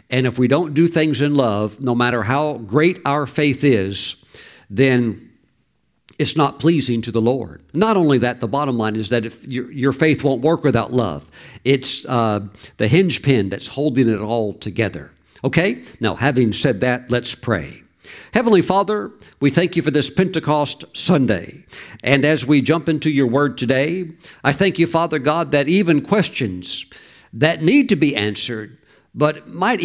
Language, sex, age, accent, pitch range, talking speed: English, male, 50-69, American, 115-160 Hz, 175 wpm